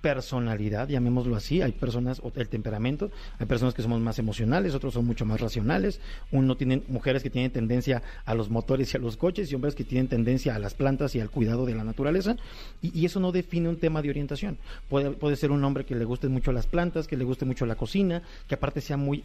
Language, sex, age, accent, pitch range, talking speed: Spanish, male, 40-59, Mexican, 120-145 Hz, 235 wpm